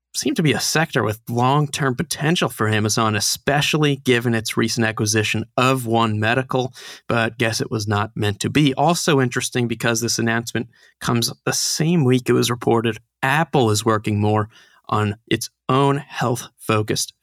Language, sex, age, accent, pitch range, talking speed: English, male, 30-49, American, 115-135 Hz, 160 wpm